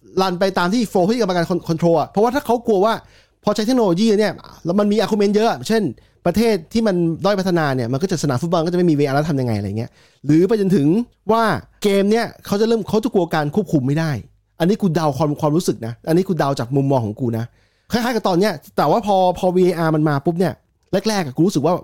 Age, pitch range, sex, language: 20-39, 135-195 Hz, male, English